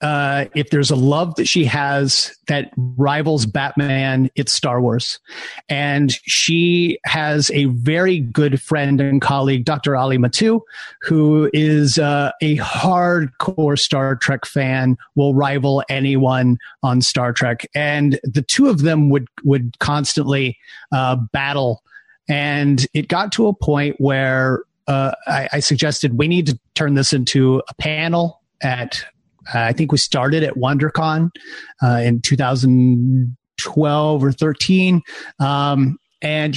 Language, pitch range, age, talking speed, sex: English, 135-155 Hz, 30-49, 135 wpm, male